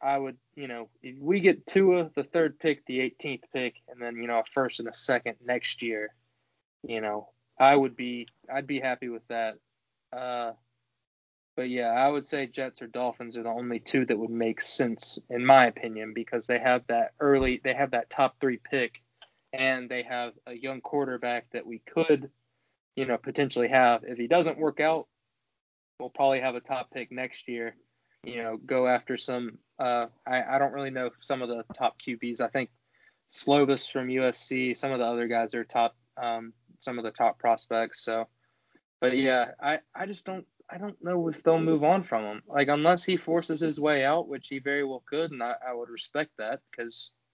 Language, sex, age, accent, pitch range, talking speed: English, male, 20-39, American, 120-140 Hz, 205 wpm